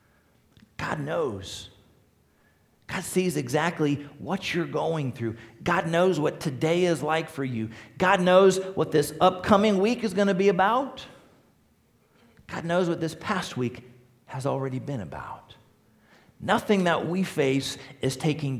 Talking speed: 140 wpm